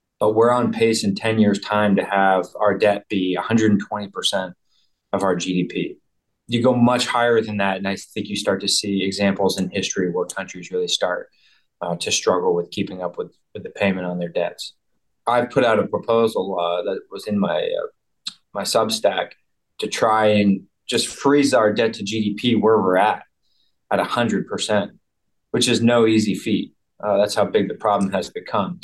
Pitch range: 100-125 Hz